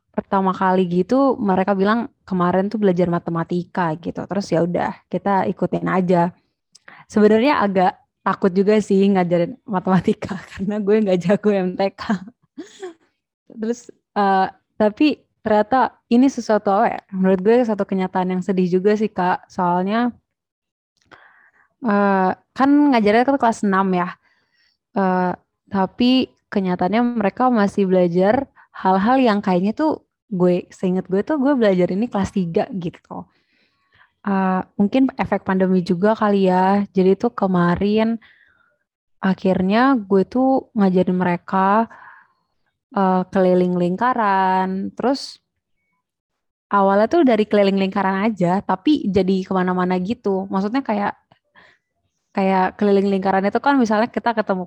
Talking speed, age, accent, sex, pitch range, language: 125 wpm, 20-39, native, female, 185-220 Hz, Indonesian